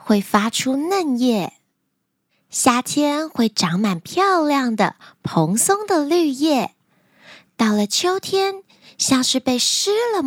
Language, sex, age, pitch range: Chinese, female, 20-39, 210-330 Hz